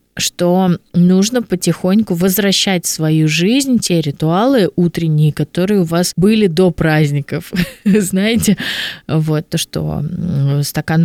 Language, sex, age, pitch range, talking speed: Russian, female, 20-39, 165-200 Hz, 115 wpm